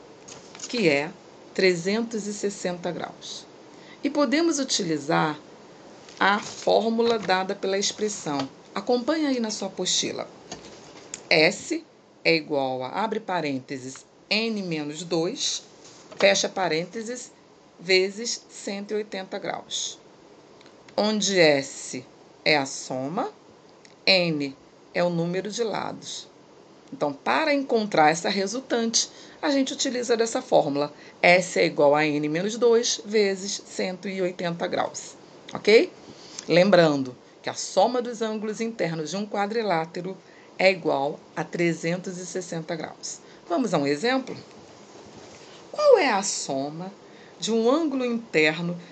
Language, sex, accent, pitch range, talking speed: Portuguese, female, Brazilian, 170-235 Hz, 110 wpm